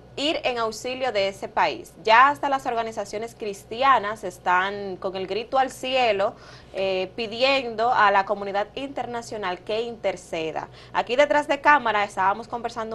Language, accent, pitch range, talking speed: Spanish, American, 200-245 Hz, 145 wpm